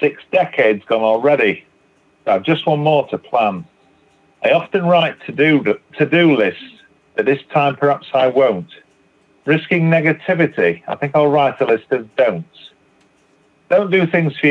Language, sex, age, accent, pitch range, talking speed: English, male, 40-59, British, 105-160 Hz, 155 wpm